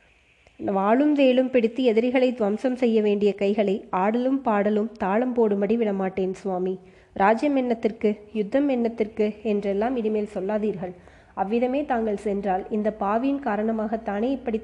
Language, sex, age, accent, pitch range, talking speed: Tamil, female, 20-39, native, 200-235 Hz, 110 wpm